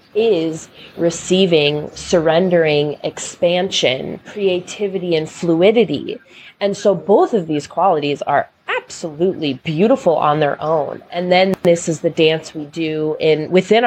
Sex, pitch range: female, 150-180 Hz